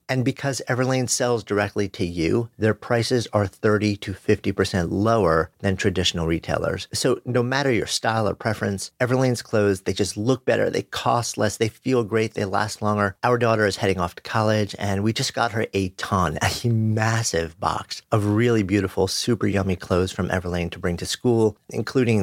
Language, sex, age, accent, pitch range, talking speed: English, male, 50-69, American, 95-120 Hz, 185 wpm